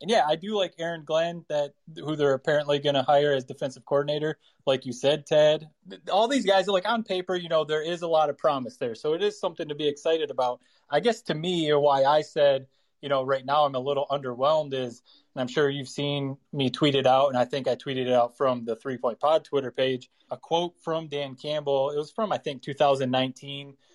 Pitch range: 130-155 Hz